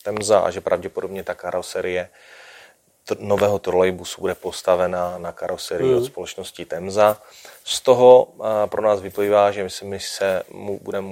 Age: 30-49